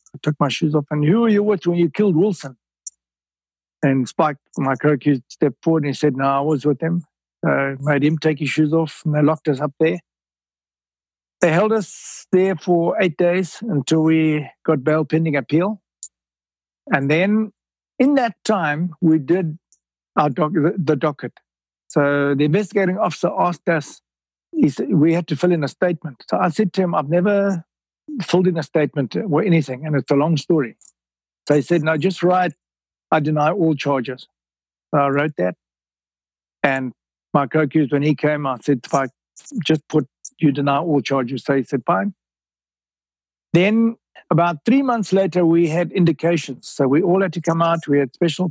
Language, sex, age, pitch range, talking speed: English, male, 60-79, 135-170 Hz, 180 wpm